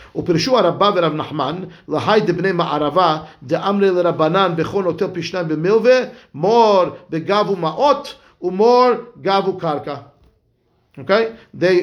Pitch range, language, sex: 165-215 Hz, English, male